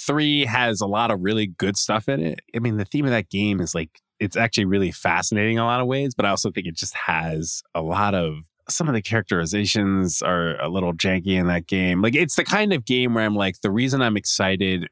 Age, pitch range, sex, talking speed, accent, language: 20-39, 85-105 Hz, male, 250 wpm, American, English